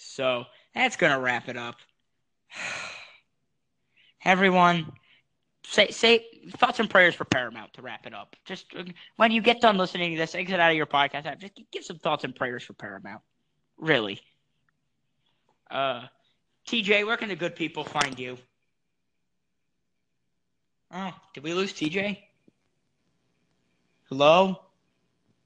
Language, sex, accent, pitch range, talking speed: English, male, American, 120-175 Hz, 130 wpm